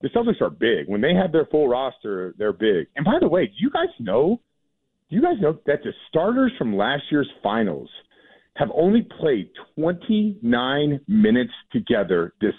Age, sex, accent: 50-69, male, American